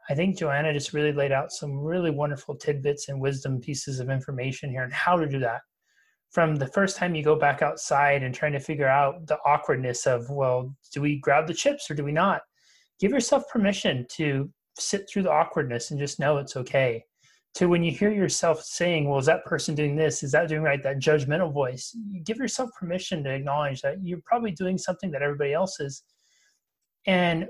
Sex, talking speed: male, 205 wpm